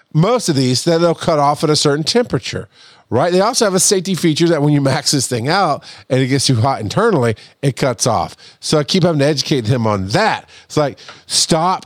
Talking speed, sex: 235 wpm, male